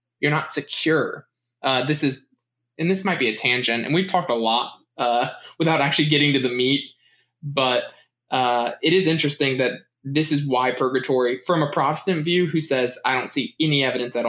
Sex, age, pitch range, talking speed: male, 20-39, 120-150 Hz, 195 wpm